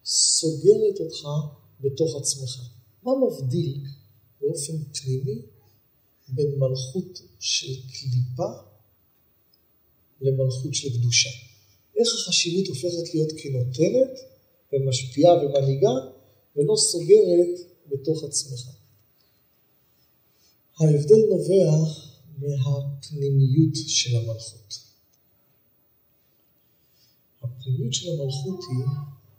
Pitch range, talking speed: 130-175 Hz, 70 wpm